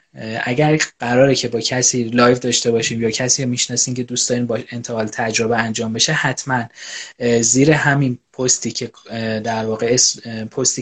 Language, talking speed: Persian, 150 wpm